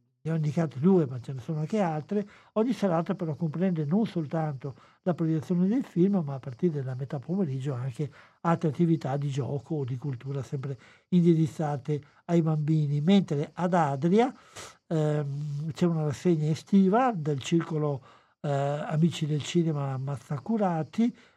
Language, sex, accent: Italian, male, native